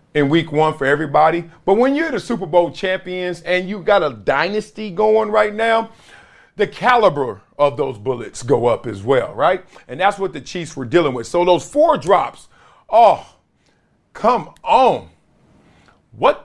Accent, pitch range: American, 155-225 Hz